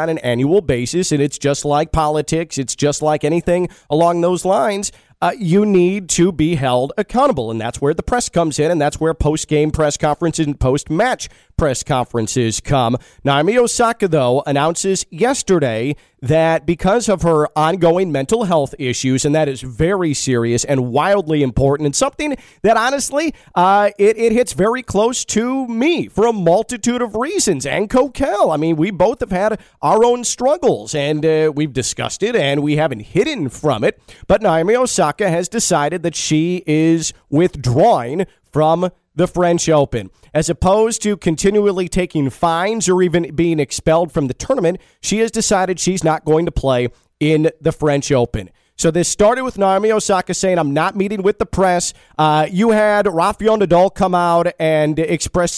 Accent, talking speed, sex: American, 175 wpm, male